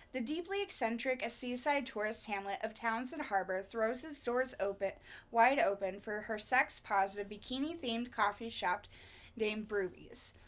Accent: American